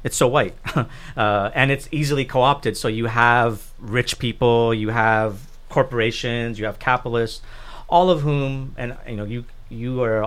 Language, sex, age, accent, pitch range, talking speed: English, male, 40-59, American, 110-130 Hz, 165 wpm